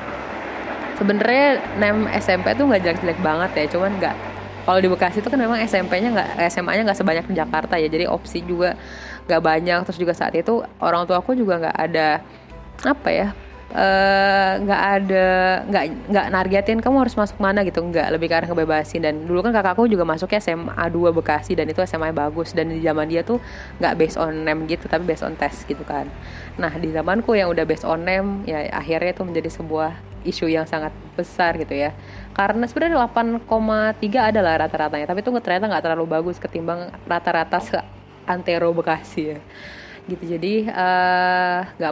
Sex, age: female, 20-39